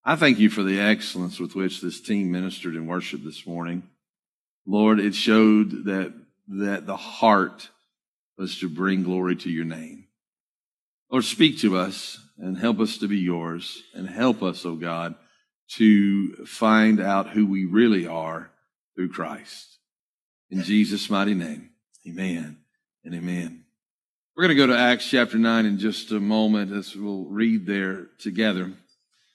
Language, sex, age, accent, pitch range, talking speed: English, male, 50-69, American, 95-130 Hz, 160 wpm